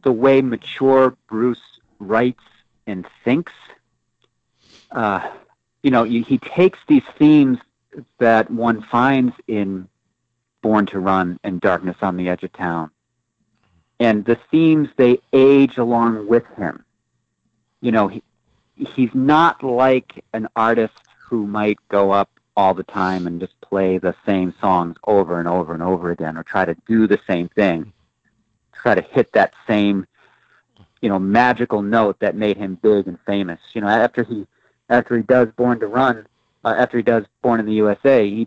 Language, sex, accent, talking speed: English, male, American, 165 wpm